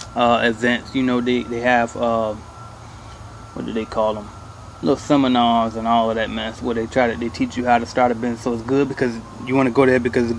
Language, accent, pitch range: English, American, 115-135 Hz